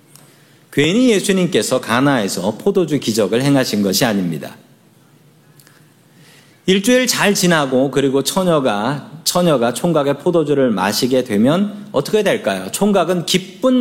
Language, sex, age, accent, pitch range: Korean, male, 40-59, native, 135-185 Hz